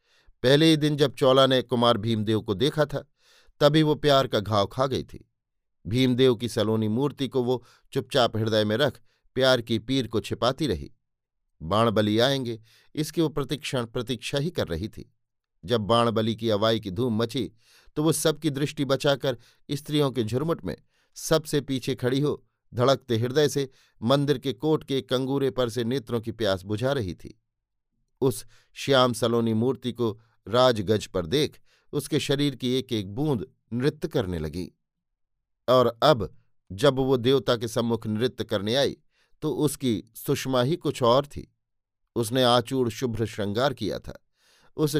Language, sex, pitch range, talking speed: Hindi, male, 115-140 Hz, 165 wpm